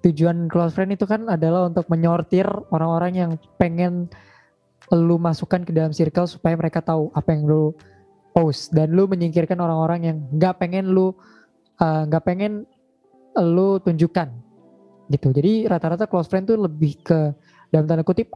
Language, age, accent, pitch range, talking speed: Indonesian, 20-39, native, 155-185 Hz, 145 wpm